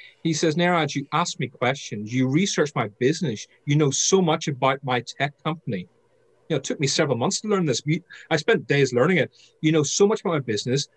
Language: English